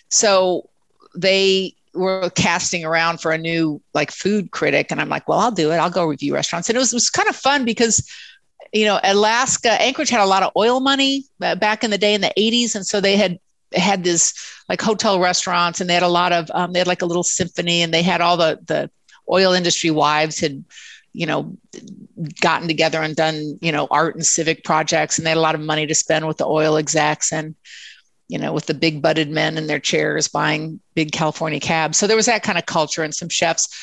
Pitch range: 160-210 Hz